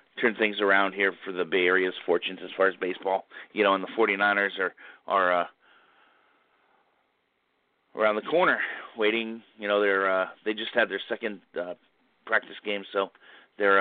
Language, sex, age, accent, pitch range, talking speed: English, male, 30-49, American, 100-110 Hz, 175 wpm